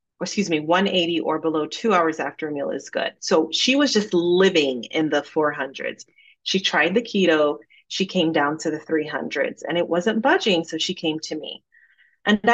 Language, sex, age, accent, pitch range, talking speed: English, female, 30-49, American, 155-210 Hz, 190 wpm